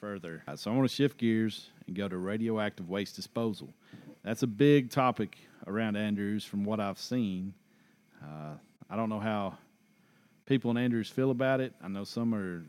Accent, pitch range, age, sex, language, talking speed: American, 100-125 Hz, 40-59, male, English, 180 wpm